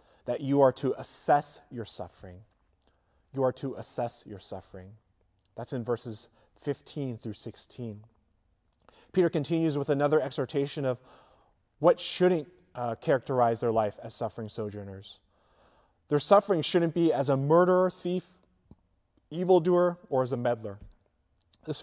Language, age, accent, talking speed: English, 30-49, American, 130 wpm